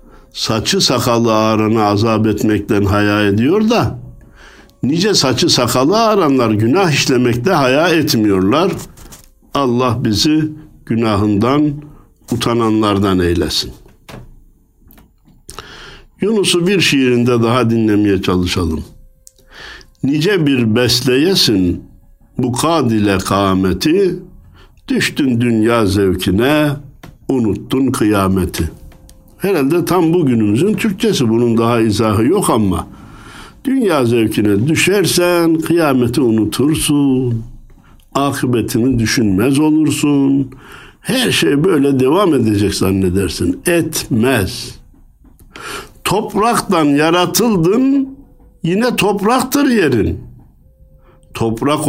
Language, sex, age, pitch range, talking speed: Turkish, male, 60-79, 105-155 Hz, 80 wpm